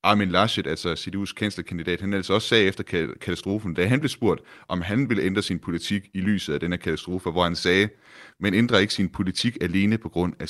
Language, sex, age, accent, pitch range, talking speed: Danish, male, 30-49, native, 85-105 Hz, 225 wpm